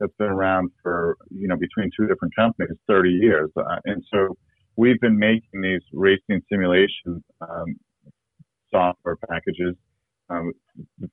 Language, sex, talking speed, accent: English, male, 135 wpm, American